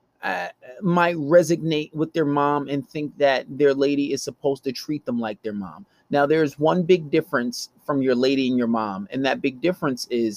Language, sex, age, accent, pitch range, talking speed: English, male, 30-49, American, 135-170 Hz, 205 wpm